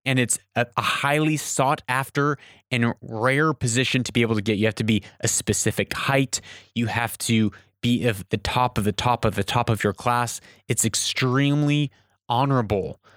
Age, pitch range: 20-39, 100-130 Hz